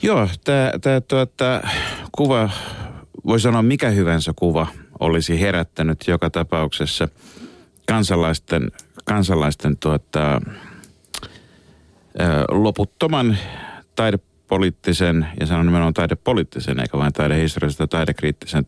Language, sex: Finnish, male